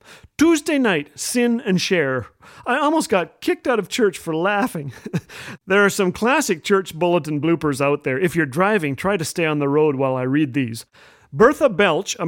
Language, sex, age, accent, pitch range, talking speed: English, male, 40-59, American, 165-220 Hz, 190 wpm